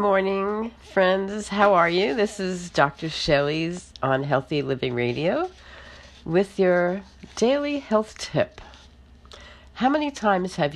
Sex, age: female, 50-69